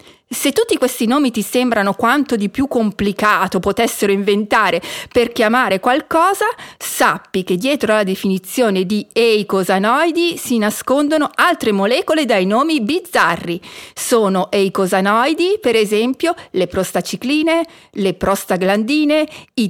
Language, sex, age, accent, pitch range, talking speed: Italian, female, 40-59, native, 200-295 Hz, 115 wpm